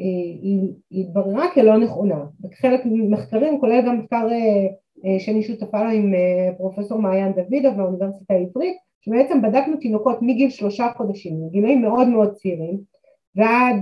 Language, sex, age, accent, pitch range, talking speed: Hebrew, female, 30-49, native, 185-245 Hz, 130 wpm